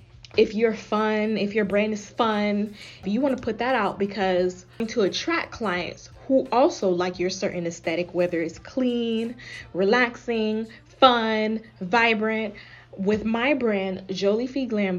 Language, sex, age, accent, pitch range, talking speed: English, female, 20-39, American, 185-230 Hz, 145 wpm